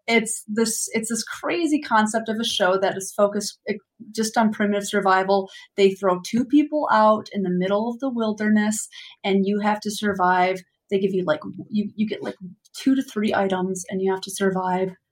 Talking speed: 195 wpm